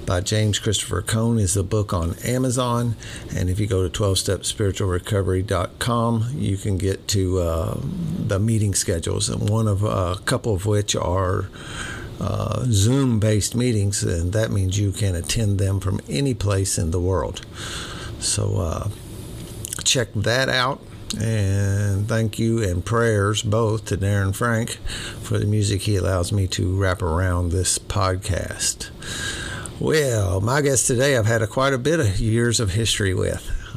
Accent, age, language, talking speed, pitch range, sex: American, 50-69, English, 155 wpm, 95-115 Hz, male